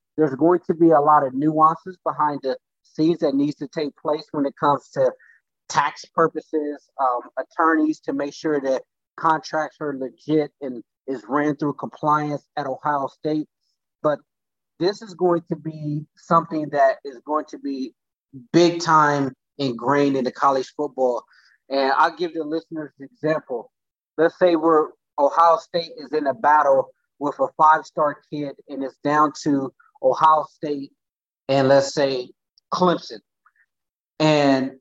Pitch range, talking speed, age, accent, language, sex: 145-170 Hz, 155 wpm, 30-49, American, English, male